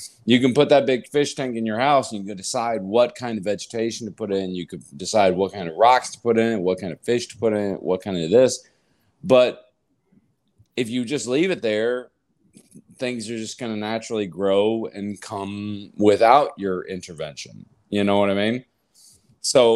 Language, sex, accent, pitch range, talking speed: English, male, American, 95-115 Hz, 205 wpm